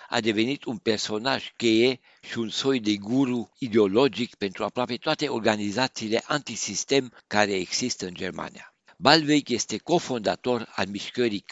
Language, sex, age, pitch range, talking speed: Romanian, male, 60-79, 105-135 Hz, 130 wpm